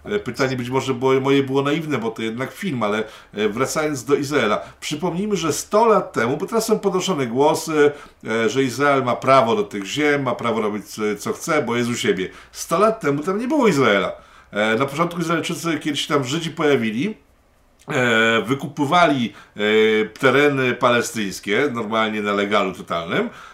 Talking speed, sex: 160 wpm, male